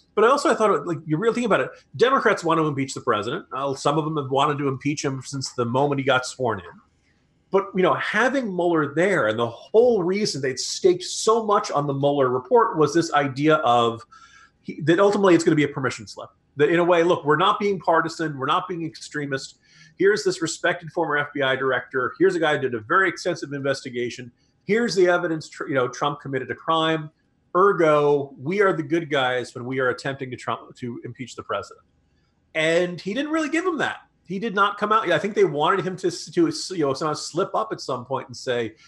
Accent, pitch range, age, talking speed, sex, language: American, 140-190 Hz, 40-59, 225 wpm, male, English